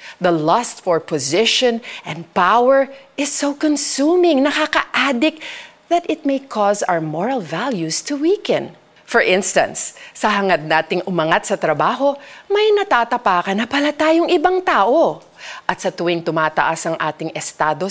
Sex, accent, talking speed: female, native, 140 wpm